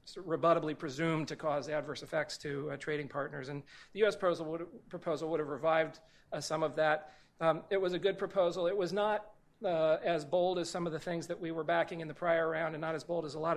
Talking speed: 240 wpm